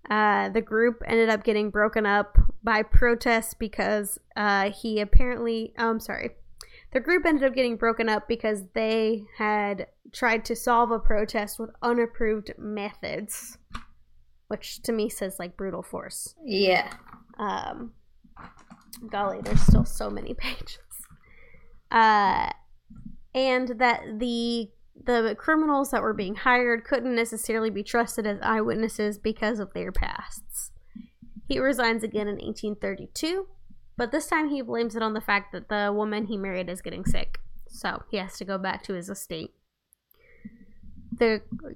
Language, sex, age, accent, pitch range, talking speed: English, female, 10-29, American, 210-240 Hz, 145 wpm